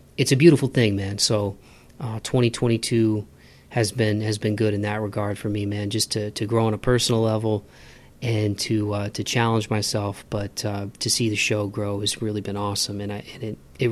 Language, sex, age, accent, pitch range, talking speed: English, male, 20-39, American, 110-125 Hz, 205 wpm